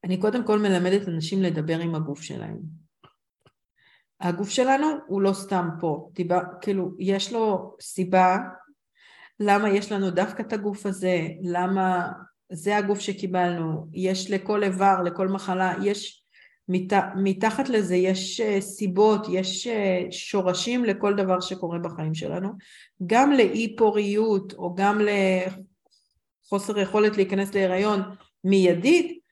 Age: 50-69